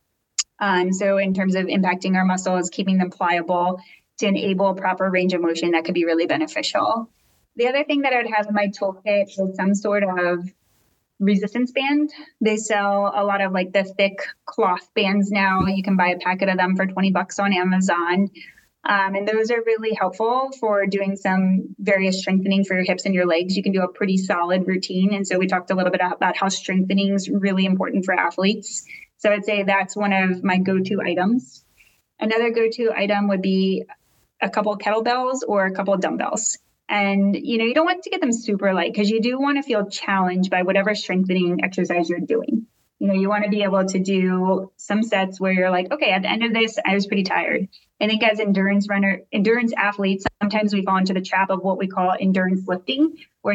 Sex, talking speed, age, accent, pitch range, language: female, 215 wpm, 20-39, American, 185-215 Hz, English